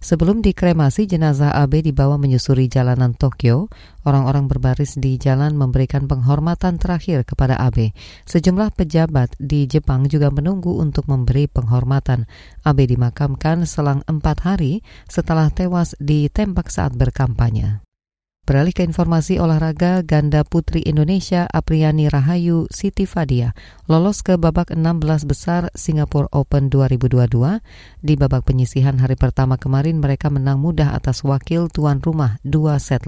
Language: Indonesian